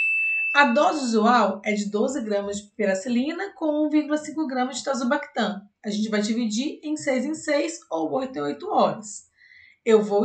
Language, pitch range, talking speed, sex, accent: Portuguese, 205-280 Hz, 170 wpm, female, Brazilian